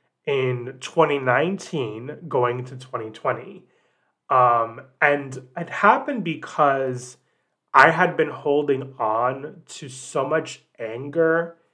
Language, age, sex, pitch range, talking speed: English, 30-49, male, 125-150 Hz, 95 wpm